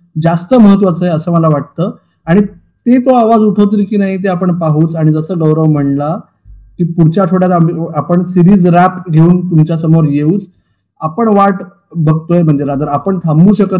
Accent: native